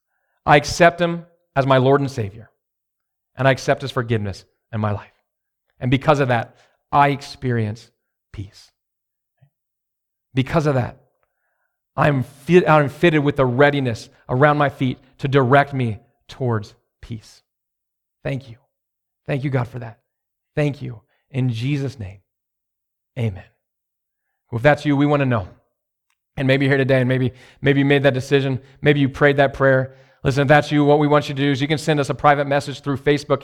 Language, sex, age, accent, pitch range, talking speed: English, male, 40-59, American, 120-140 Hz, 180 wpm